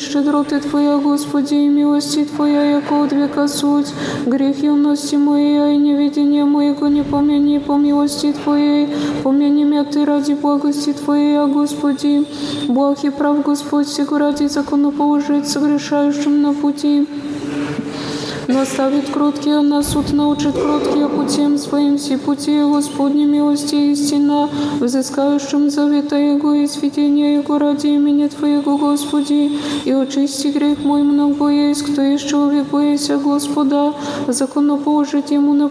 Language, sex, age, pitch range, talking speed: Polish, female, 20-39, 285-290 Hz, 125 wpm